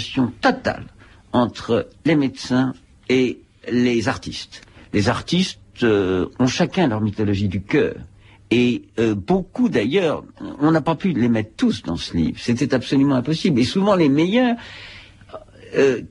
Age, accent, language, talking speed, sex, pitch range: 60-79, French, French, 140 wpm, male, 110-155 Hz